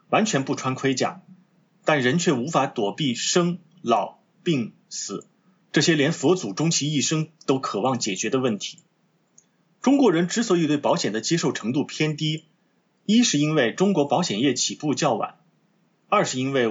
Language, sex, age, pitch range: Chinese, male, 30-49, 130-190 Hz